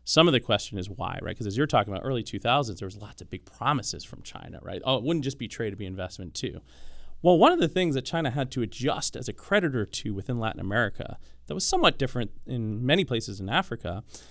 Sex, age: male, 30-49